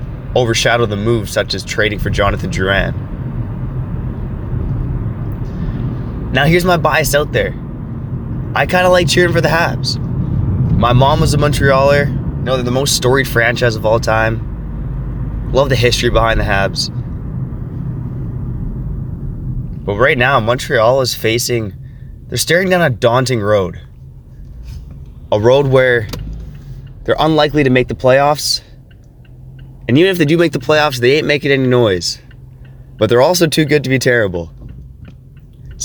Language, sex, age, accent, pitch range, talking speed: English, male, 20-39, American, 120-140 Hz, 145 wpm